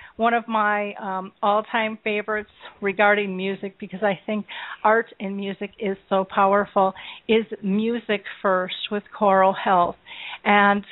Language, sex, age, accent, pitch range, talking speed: English, female, 40-59, American, 200-235 Hz, 130 wpm